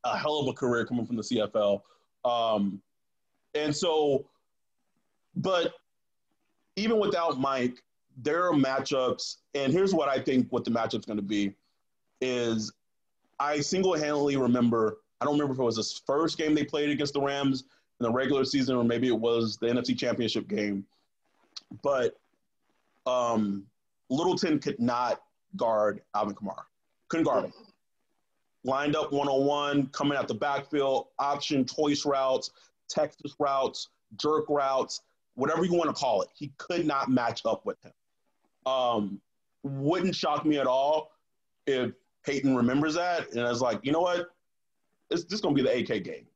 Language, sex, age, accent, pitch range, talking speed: English, male, 30-49, American, 120-150 Hz, 160 wpm